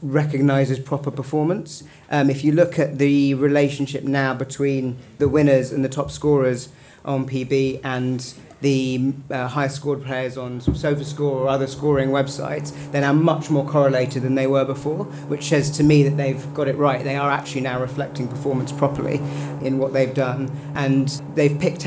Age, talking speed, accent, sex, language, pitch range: 40-59, 175 wpm, British, male, English, 130-145 Hz